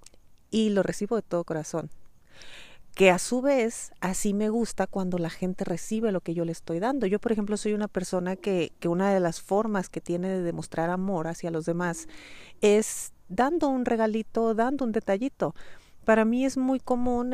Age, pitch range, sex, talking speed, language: 40-59, 180-235 Hz, female, 190 wpm, Spanish